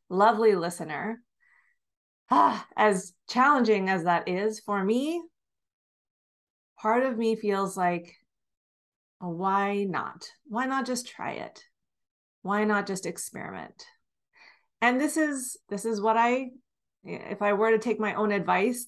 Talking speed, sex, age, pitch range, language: 135 wpm, female, 30-49, 180-230 Hz, English